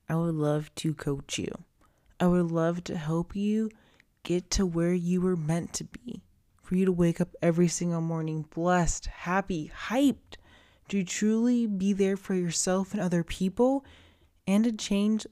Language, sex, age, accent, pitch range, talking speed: English, female, 20-39, American, 165-200 Hz, 170 wpm